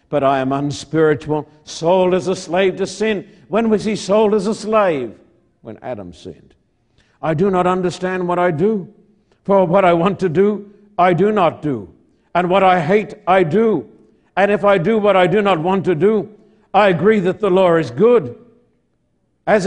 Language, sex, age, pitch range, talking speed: English, male, 60-79, 180-225 Hz, 190 wpm